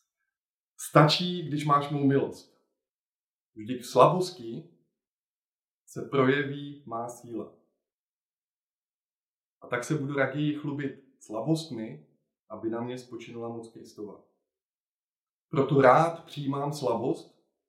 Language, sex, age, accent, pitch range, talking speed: Czech, male, 20-39, native, 110-140 Hz, 100 wpm